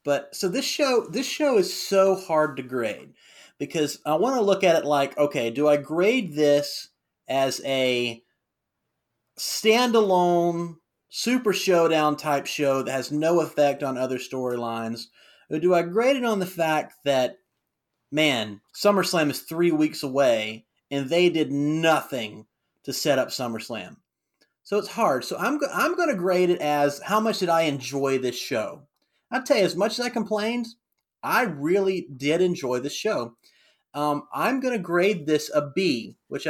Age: 30-49